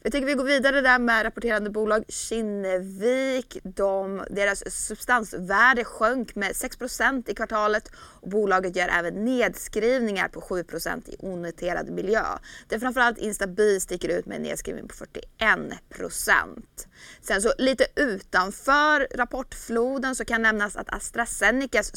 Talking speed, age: 135 wpm, 20-39